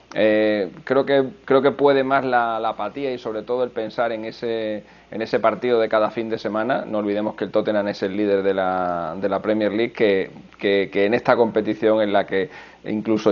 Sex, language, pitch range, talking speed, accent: male, Spanish, 100-120 Hz, 220 wpm, Spanish